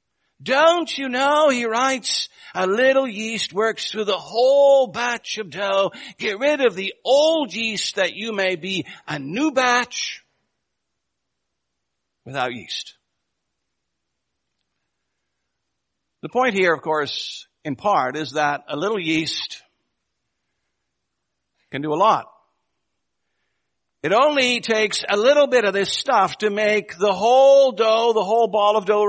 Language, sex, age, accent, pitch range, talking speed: English, male, 60-79, American, 205-270 Hz, 135 wpm